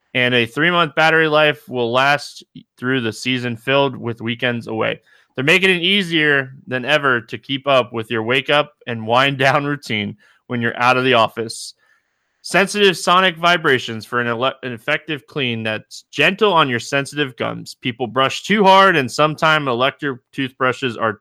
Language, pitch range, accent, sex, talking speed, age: English, 115-150 Hz, American, male, 165 wpm, 20-39